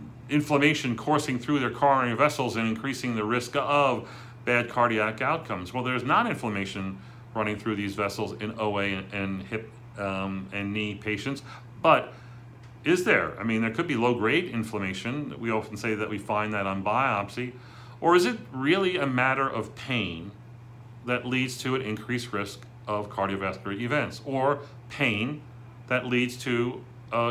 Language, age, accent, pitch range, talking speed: English, 40-59, American, 105-125 Hz, 160 wpm